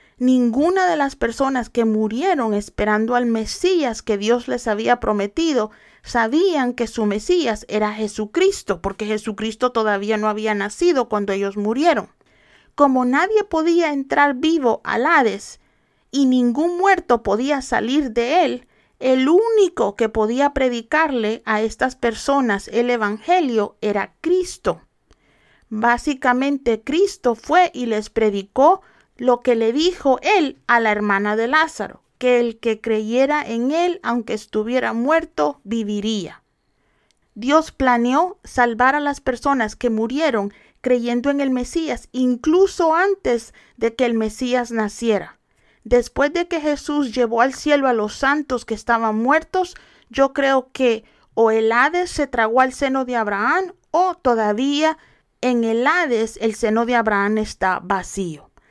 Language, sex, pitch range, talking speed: Spanish, female, 220-290 Hz, 140 wpm